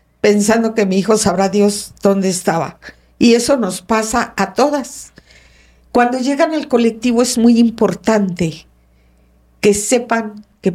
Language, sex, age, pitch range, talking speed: English, female, 50-69, 150-210 Hz, 135 wpm